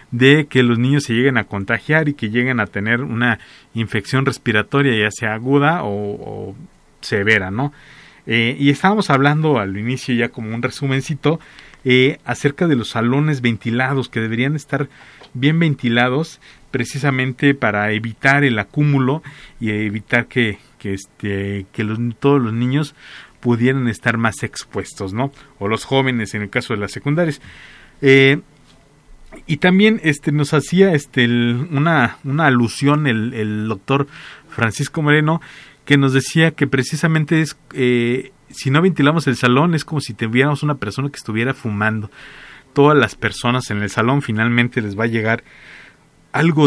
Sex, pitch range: male, 115-145 Hz